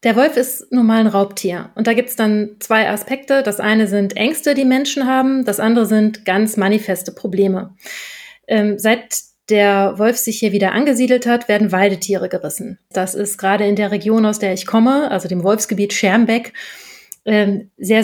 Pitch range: 200-235 Hz